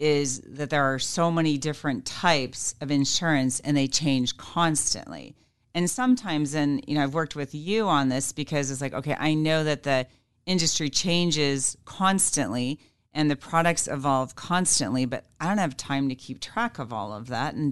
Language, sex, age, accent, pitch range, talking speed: English, female, 40-59, American, 130-155 Hz, 185 wpm